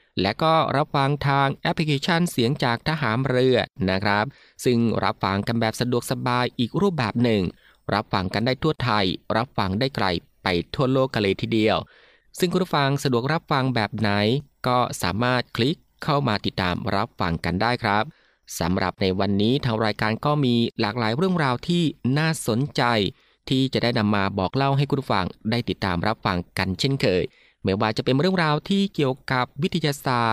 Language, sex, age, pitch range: Thai, male, 20-39, 105-140 Hz